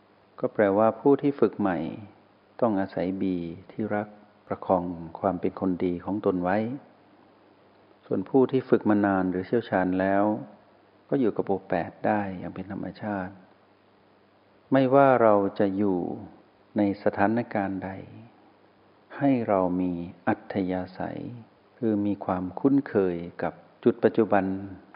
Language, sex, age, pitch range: Thai, male, 60-79, 95-115 Hz